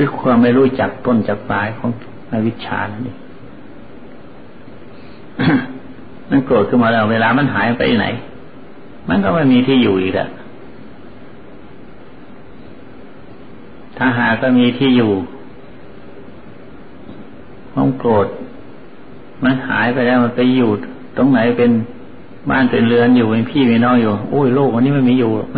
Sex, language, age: male, Thai, 60-79